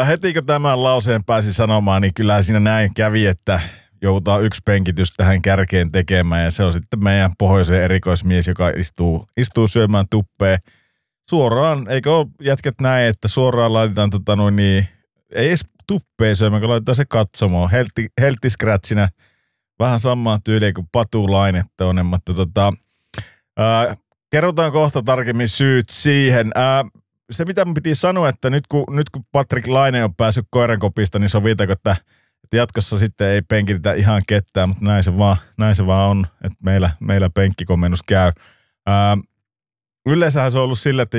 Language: Finnish